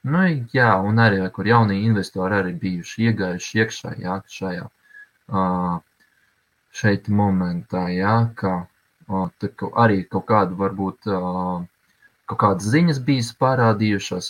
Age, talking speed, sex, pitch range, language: 20-39, 105 wpm, male, 100-125 Hz, English